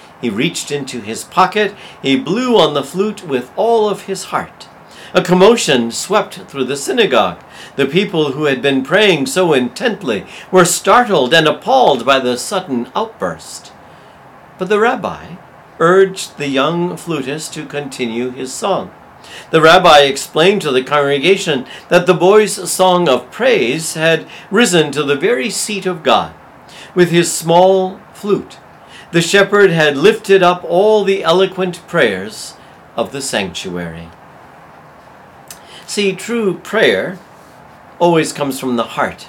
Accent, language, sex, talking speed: American, English, male, 140 wpm